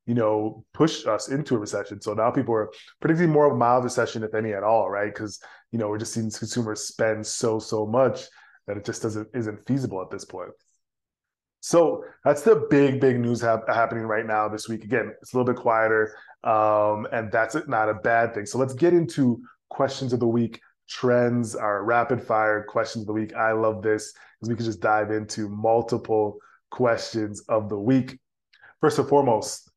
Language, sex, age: English, male, 20-39